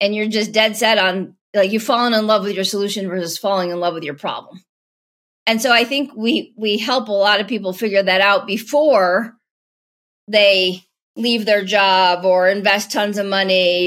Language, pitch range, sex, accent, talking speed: English, 185-235 Hz, female, American, 195 wpm